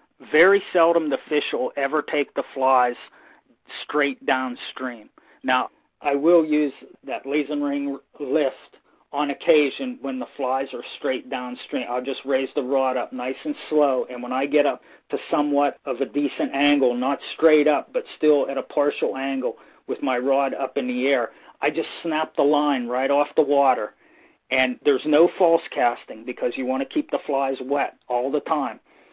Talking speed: 180 wpm